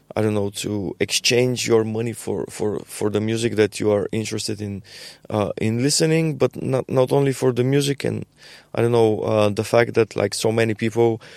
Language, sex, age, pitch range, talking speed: English, male, 20-39, 110-125 Hz, 205 wpm